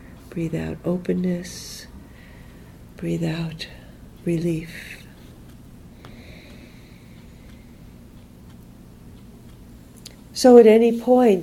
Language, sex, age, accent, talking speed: English, female, 50-69, American, 55 wpm